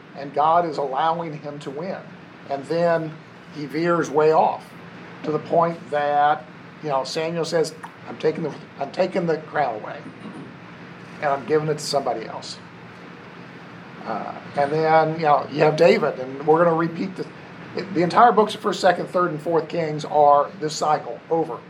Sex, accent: male, American